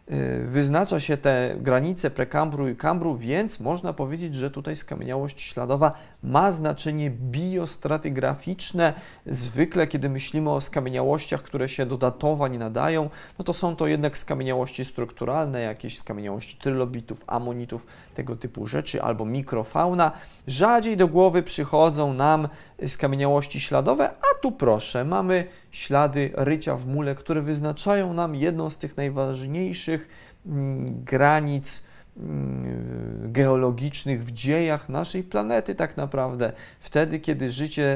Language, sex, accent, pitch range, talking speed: Polish, male, native, 125-155 Hz, 120 wpm